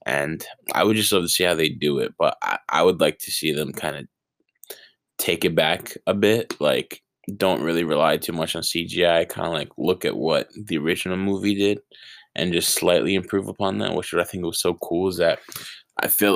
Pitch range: 85-95 Hz